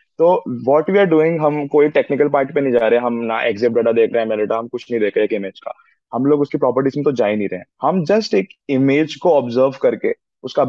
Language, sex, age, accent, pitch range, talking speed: Hindi, male, 20-39, native, 130-160 Hz, 190 wpm